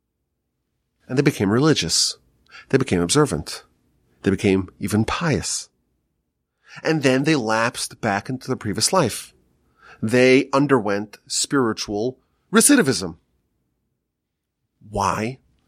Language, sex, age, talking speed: English, male, 30-49, 95 wpm